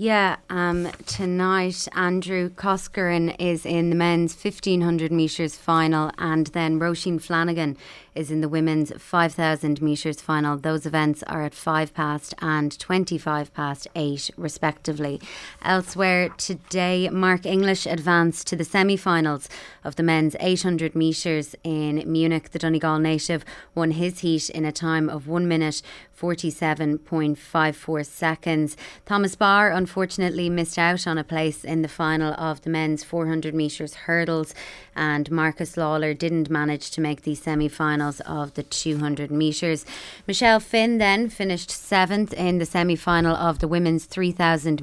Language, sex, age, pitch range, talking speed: English, female, 20-39, 155-175 Hz, 140 wpm